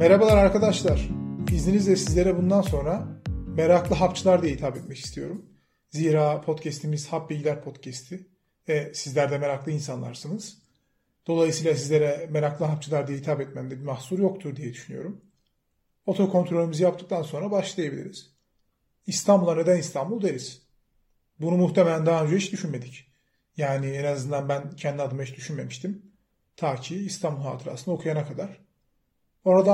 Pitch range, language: 145-185 Hz, Turkish